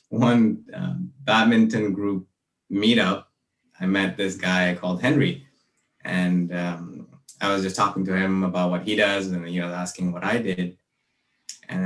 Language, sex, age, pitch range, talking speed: English, male, 20-39, 90-110 Hz, 165 wpm